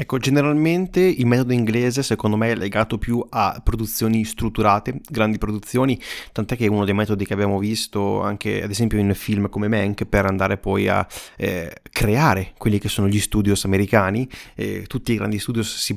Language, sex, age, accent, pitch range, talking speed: Italian, male, 20-39, native, 100-120 Hz, 185 wpm